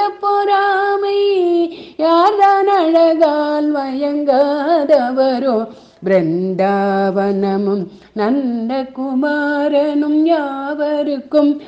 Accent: native